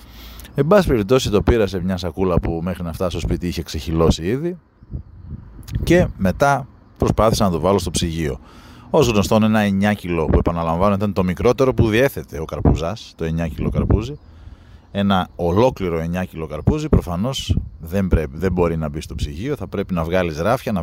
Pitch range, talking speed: 85-110 Hz, 180 wpm